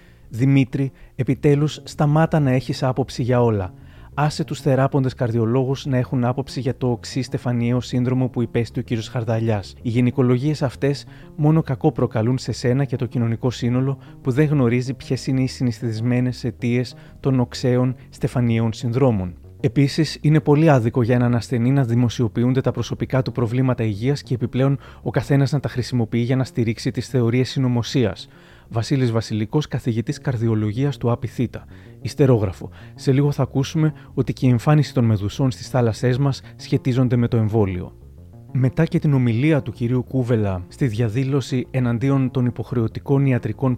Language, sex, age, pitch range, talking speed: Greek, male, 30-49, 120-135 Hz, 155 wpm